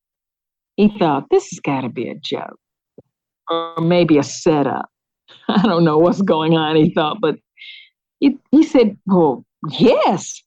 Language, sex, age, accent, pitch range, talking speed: English, female, 50-69, American, 230-325 Hz, 155 wpm